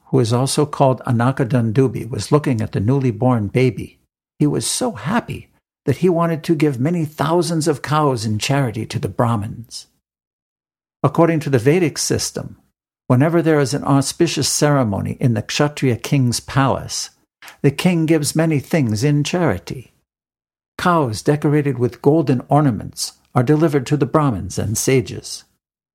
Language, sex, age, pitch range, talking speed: English, male, 60-79, 120-150 Hz, 150 wpm